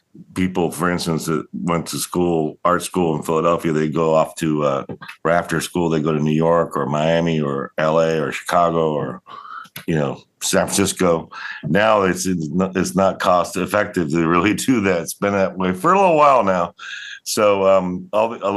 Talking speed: 180 wpm